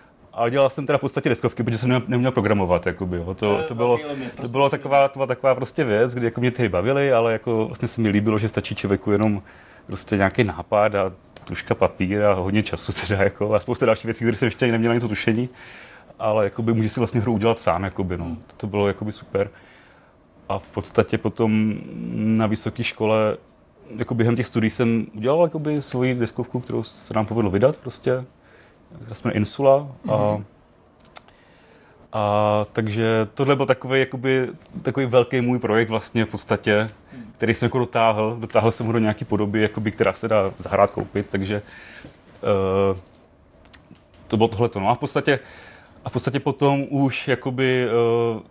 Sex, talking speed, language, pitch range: male, 170 wpm, Czech, 105-125 Hz